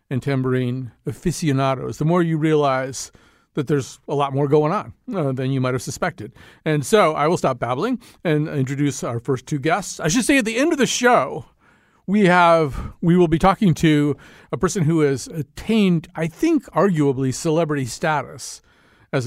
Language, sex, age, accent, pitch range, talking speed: English, male, 40-59, American, 135-175 Hz, 185 wpm